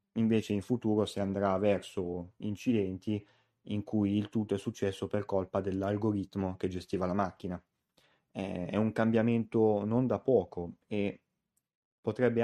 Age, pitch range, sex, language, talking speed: 20-39, 95-110 Hz, male, Italian, 135 wpm